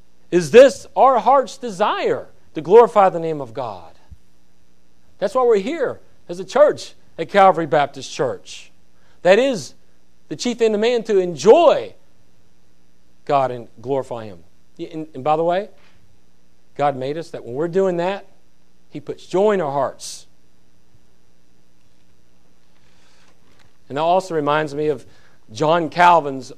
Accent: American